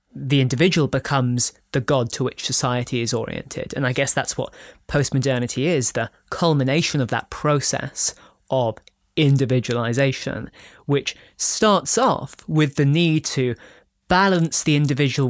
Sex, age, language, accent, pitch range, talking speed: male, 20-39, English, British, 125-155 Hz, 135 wpm